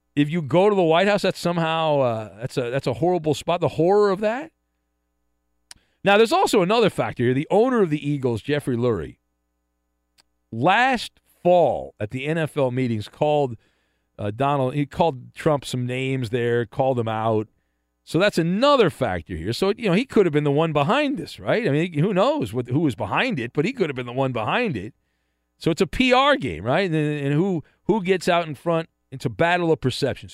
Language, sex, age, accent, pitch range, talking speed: English, male, 40-59, American, 115-180 Hz, 210 wpm